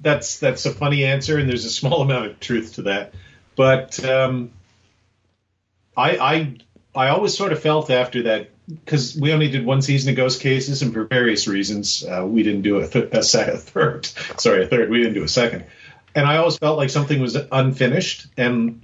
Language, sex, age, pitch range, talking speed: English, male, 40-59, 110-135 Hz, 205 wpm